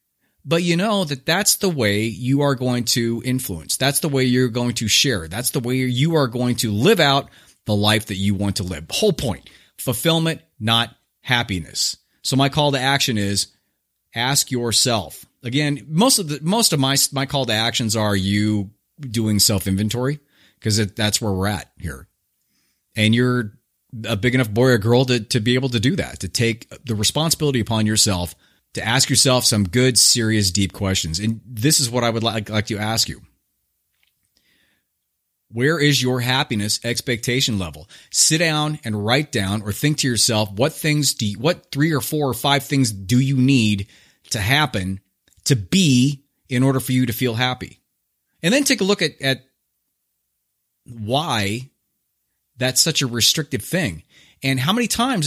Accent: American